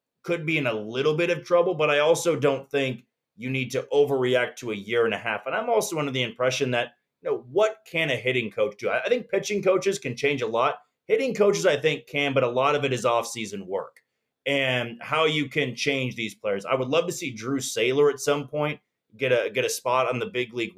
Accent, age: American, 30-49